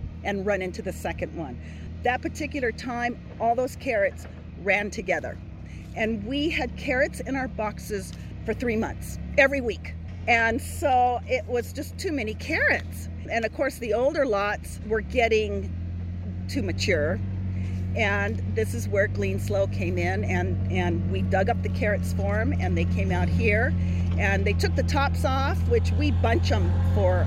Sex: female